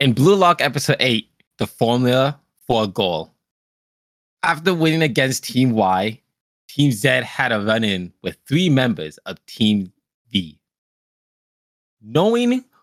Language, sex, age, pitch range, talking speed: English, male, 20-39, 105-150 Hz, 125 wpm